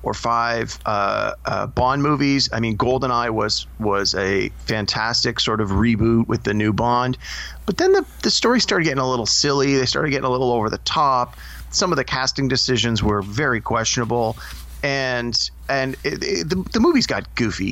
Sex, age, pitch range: male, 30-49, 110-140 Hz